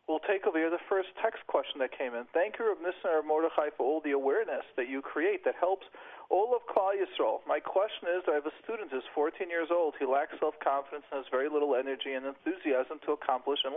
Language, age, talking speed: English, 40-59, 230 wpm